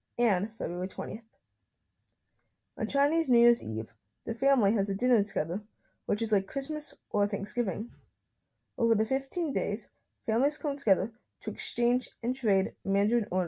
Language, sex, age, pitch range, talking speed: English, female, 20-39, 195-240 Hz, 140 wpm